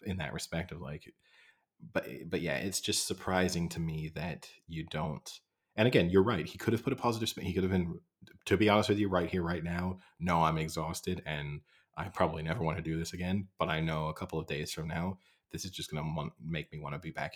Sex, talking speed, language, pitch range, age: male, 250 wpm, English, 80-95 Hz, 30-49